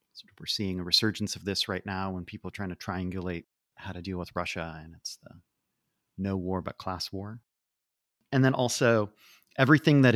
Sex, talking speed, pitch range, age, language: male, 190 wpm, 100-125 Hz, 40-59, English